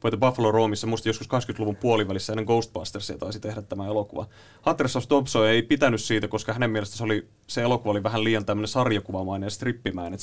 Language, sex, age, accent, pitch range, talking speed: Finnish, male, 30-49, native, 105-130 Hz, 170 wpm